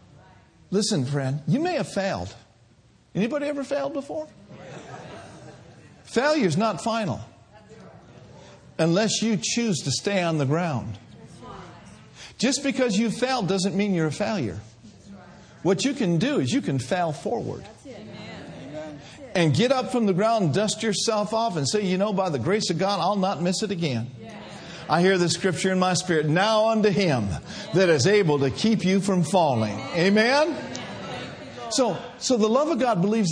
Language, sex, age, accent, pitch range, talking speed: English, male, 50-69, American, 155-225 Hz, 160 wpm